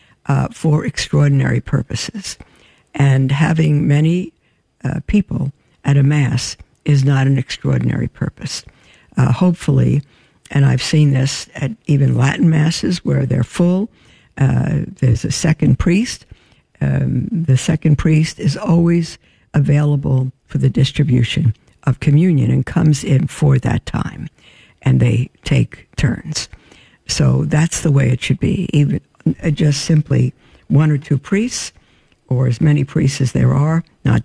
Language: English